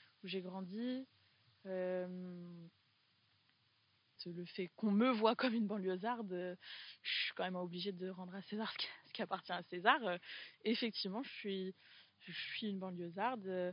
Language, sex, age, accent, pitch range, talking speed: French, female, 20-39, French, 175-205 Hz, 160 wpm